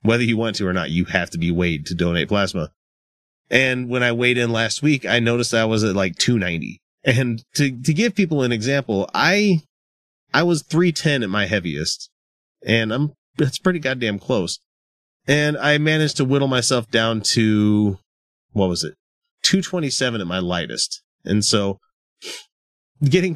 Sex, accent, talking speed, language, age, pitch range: male, American, 180 wpm, English, 30-49, 95-130 Hz